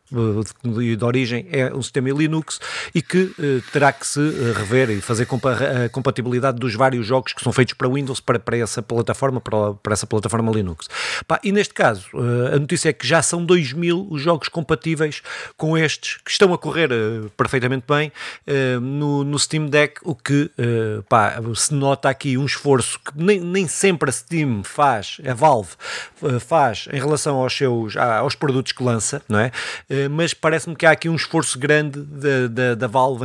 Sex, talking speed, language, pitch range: male, 195 wpm, Portuguese, 125-155 Hz